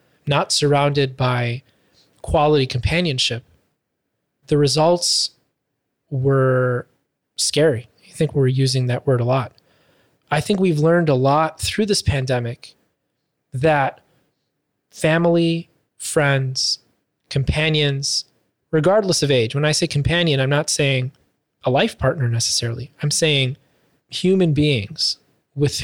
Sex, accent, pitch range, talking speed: male, American, 130-155 Hz, 115 wpm